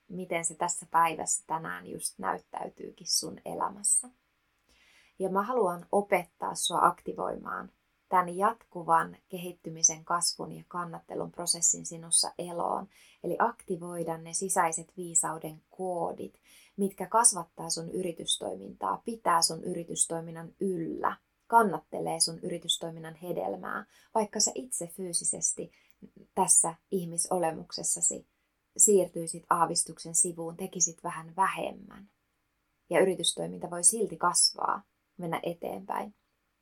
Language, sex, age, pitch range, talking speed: Finnish, female, 20-39, 165-195 Hz, 100 wpm